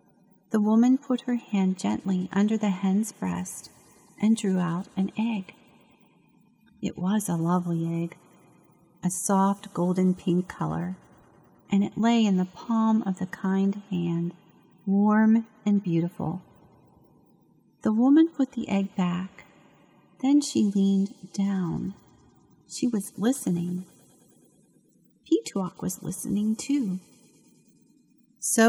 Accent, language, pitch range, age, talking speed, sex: American, English, 180-220 Hz, 40-59, 115 wpm, female